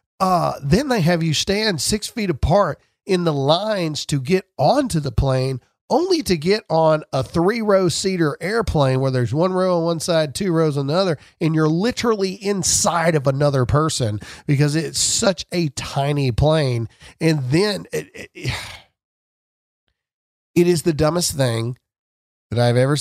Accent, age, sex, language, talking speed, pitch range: American, 40-59, male, English, 160 wpm, 130-190 Hz